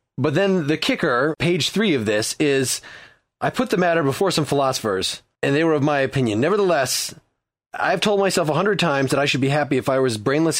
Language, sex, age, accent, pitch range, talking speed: English, male, 30-49, American, 115-150 Hz, 215 wpm